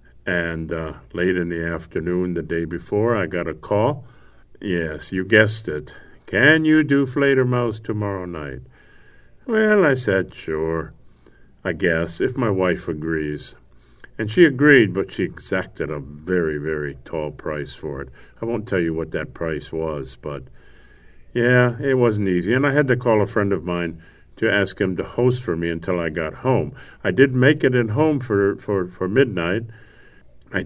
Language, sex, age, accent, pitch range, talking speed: English, male, 50-69, American, 85-125 Hz, 175 wpm